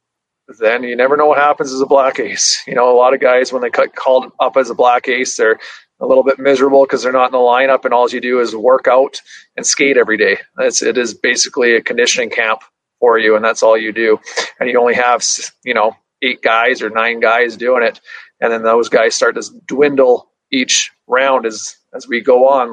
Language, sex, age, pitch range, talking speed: English, male, 40-59, 115-145 Hz, 230 wpm